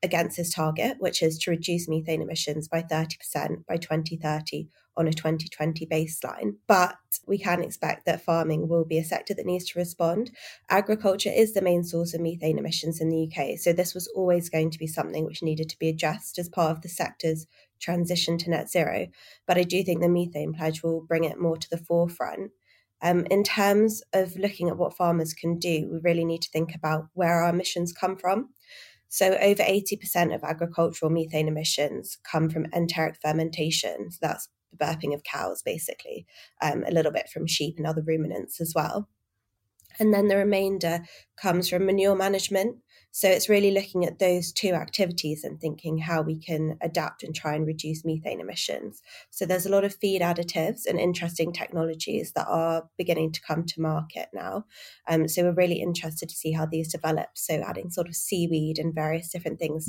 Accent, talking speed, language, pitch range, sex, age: British, 195 wpm, English, 160-180 Hz, female, 20-39